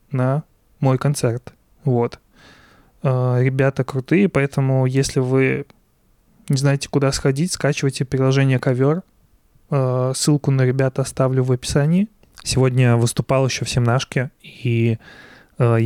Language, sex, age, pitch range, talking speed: Russian, male, 20-39, 120-135 Hz, 115 wpm